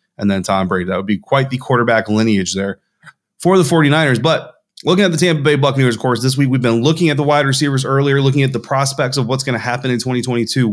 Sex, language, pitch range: male, English, 115-145 Hz